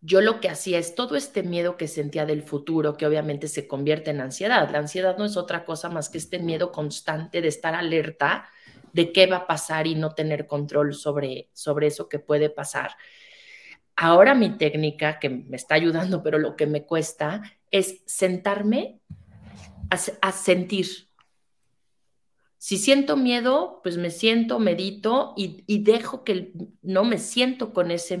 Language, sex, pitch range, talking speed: Spanish, female, 155-210 Hz, 170 wpm